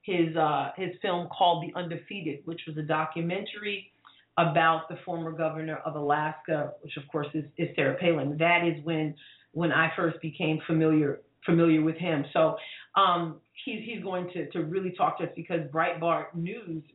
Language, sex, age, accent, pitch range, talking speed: English, female, 40-59, American, 155-175 Hz, 175 wpm